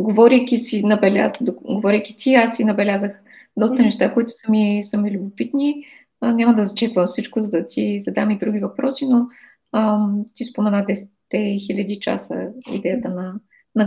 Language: Bulgarian